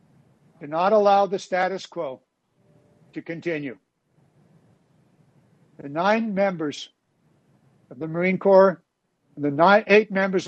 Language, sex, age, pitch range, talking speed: English, male, 60-79, 155-185 Hz, 110 wpm